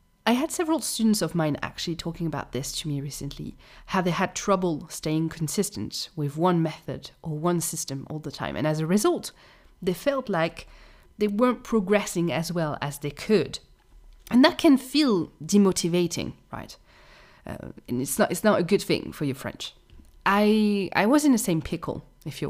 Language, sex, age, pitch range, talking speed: English, female, 30-49, 160-235 Hz, 185 wpm